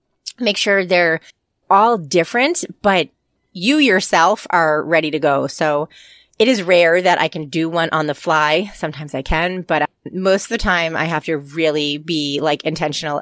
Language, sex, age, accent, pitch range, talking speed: English, female, 30-49, American, 150-195 Hz, 175 wpm